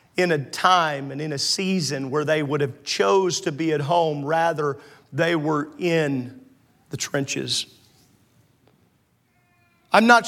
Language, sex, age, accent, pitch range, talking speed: English, male, 40-59, American, 150-195 Hz, 140 wpm